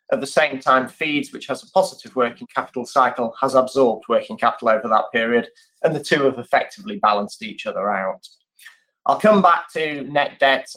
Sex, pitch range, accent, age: male, 130-180 Hz, British, 30-49